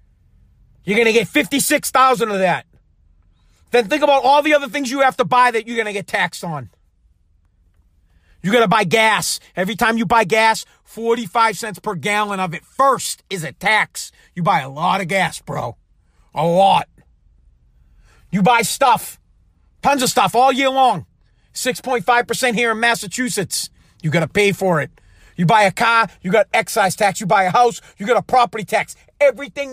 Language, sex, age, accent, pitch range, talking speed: English, male, 40-59, American, 175-270 Hz, 185 wpm